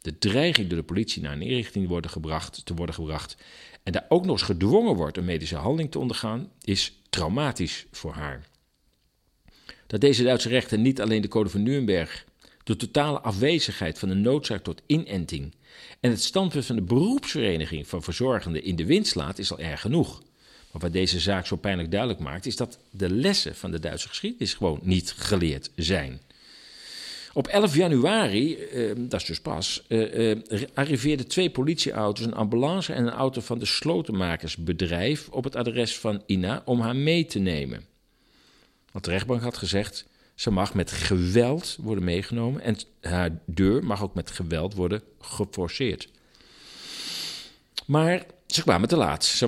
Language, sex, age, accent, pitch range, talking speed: Dutch, male, 50-69, Dutch, 90-125 Hz, 165 wpm